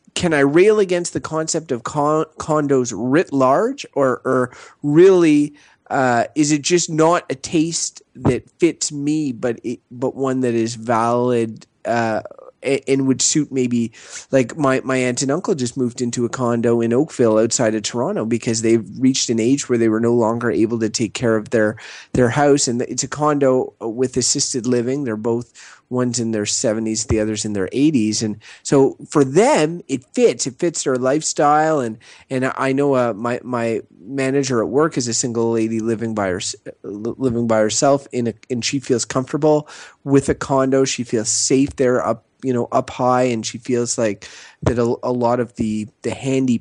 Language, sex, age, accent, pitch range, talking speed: English, male, 30-49, American, 115-140 Hz, 195 wpm